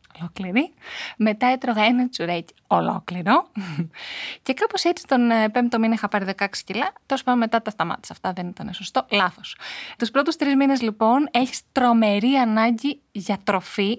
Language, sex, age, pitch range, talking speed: Greek, female, 20-39, 200-250 Hz, 155 wpm